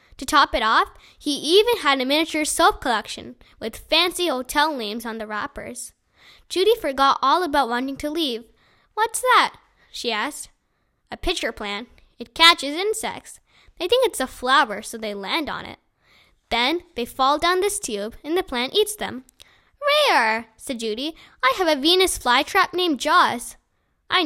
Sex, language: female, English